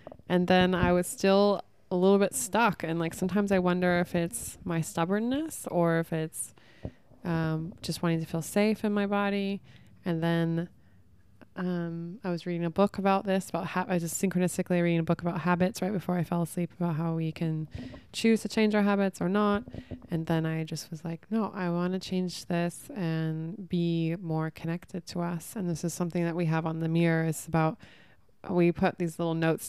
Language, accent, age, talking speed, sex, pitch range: English, American, 20-39, 205 wpm, female, 160-180 Hz